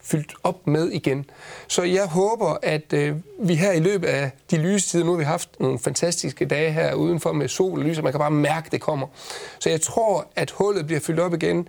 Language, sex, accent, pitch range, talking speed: Danish, male, native, 155-190 Hz, 235 wpm